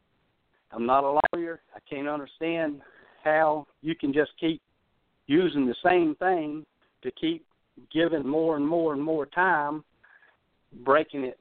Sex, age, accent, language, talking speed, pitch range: male, 60-79, American, English, 140 wpm, 135-175 Hz